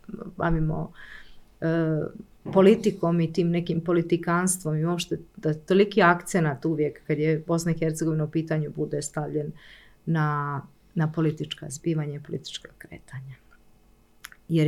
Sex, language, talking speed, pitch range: female, Croatian, 125 wpm, 150-175 Hz